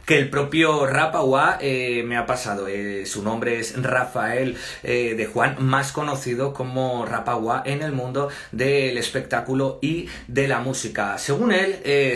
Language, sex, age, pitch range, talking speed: Spanish, male, 30-49, 120-140 Hz, 155 wpm